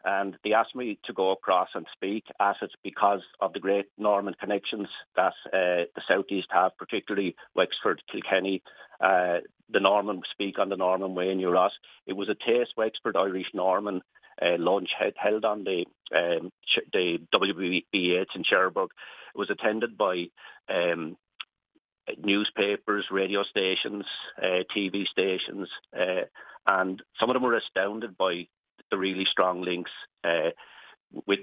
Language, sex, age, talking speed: English, male, 50-69, 150 wpm